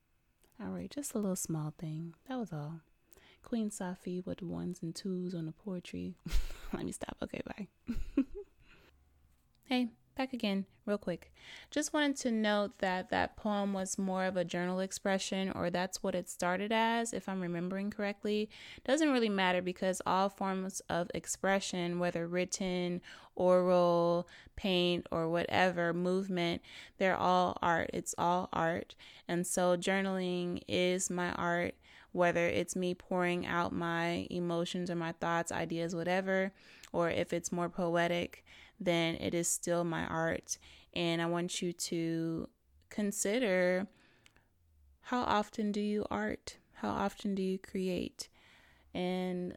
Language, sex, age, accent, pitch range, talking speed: English, female, 20-39, American, 170-200 Hz, 140 wpm